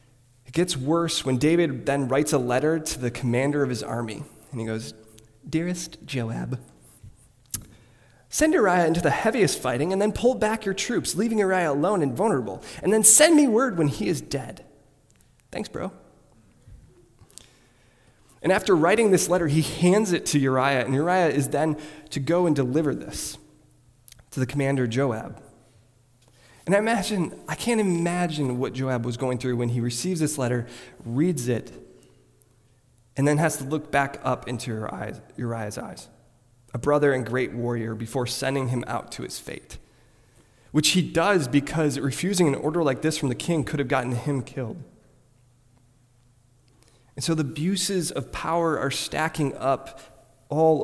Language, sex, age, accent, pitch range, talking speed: English, male, 20-39, American, 120-165 Hz, 165 wpm